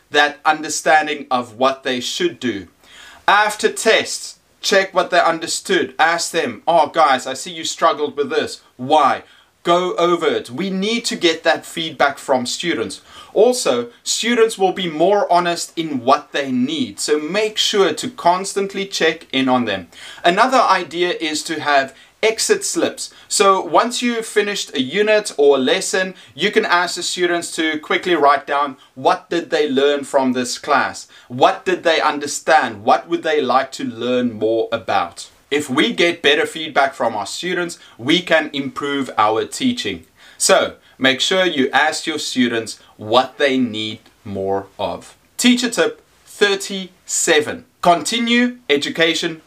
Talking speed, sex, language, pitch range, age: 155 wpm, male, English, 140-200 Hz, 30-49